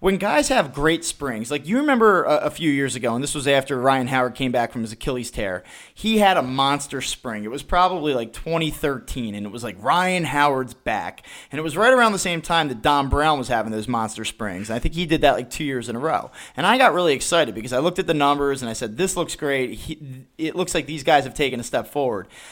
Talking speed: 260 wpm